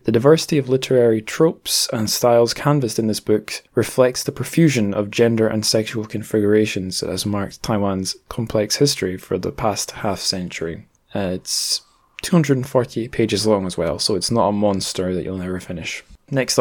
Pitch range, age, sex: 100-120 Hz, 20-39, male